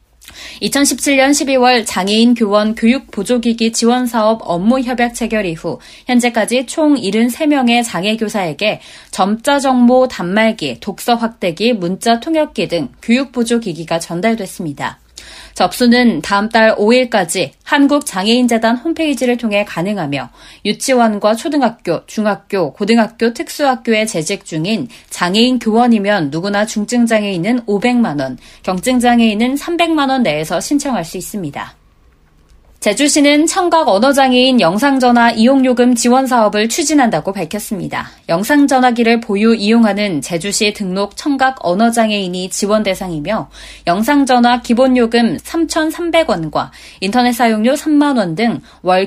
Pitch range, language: 200-255 Hz, Korean